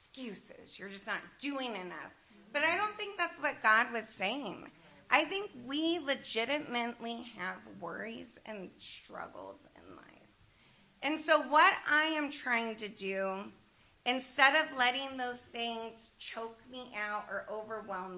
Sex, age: female, 30-49